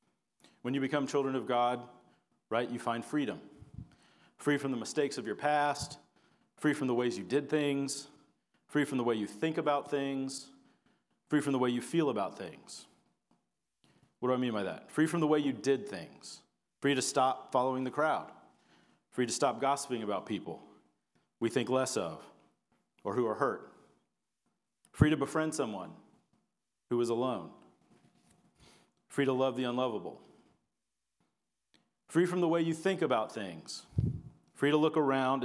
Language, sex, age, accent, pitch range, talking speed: English, male, 40-59, American, 115-145 Hz, 165 wpm